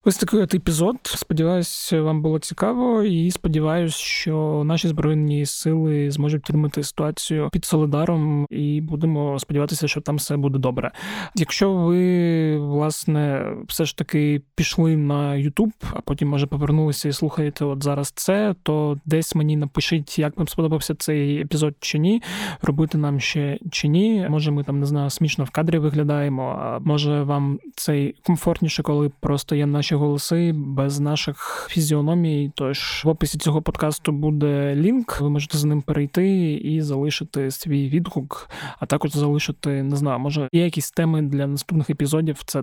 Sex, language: male, Ukrainian